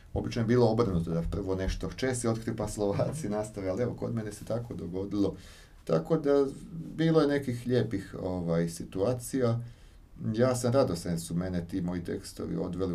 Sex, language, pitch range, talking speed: male, Croatian, 85-100 Hz, 175 wpm